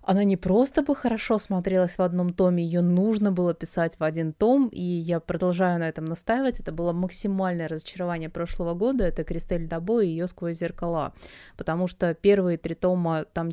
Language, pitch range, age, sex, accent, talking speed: Russian, 170-205 Hz, 20-39, female, native, 180 wpm